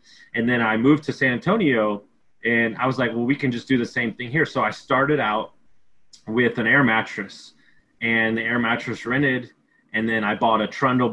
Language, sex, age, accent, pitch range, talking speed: English, male, 20-39, American, 110-130 Hz, 210 wpm